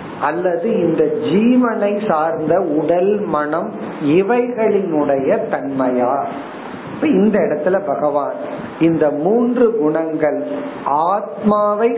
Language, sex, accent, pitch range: Tamil, male, native, 150-210 Hz